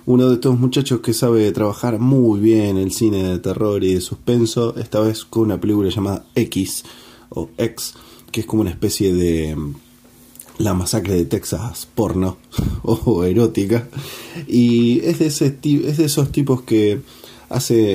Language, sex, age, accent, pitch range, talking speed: Spanish, male, 20-39, Argentinian, 100-120 Hz, 160 wpm